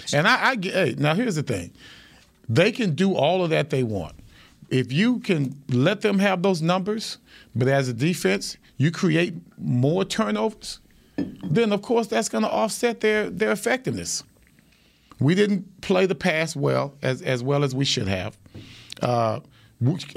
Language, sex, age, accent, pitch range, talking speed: English, male, 40-59, American, 135-215 Hz, 165 wpm